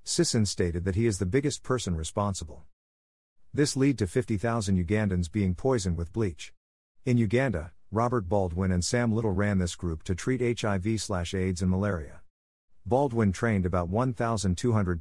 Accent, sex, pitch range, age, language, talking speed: American, male, 90-115 Hz, 50-69, English, 150 wpm